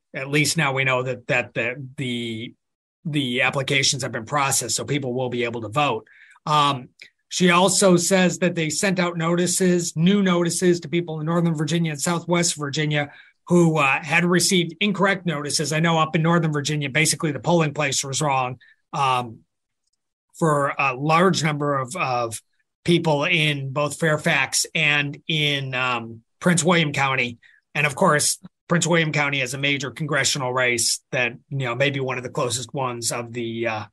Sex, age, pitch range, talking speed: male, 30-49, 135-175 Hz, 175 wpm